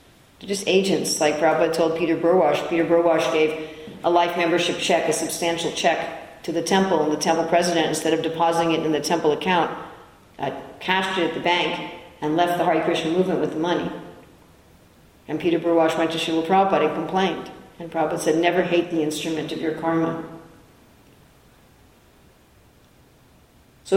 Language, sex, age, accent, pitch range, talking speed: English, female, 50-69, American, 155-180 Hz, 170 wpm